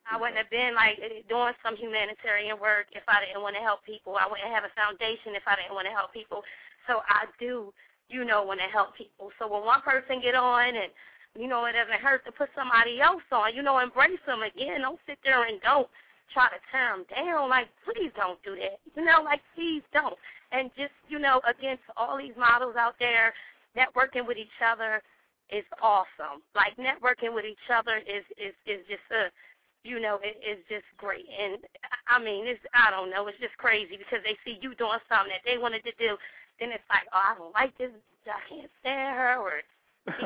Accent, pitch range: American, 215-290 Hz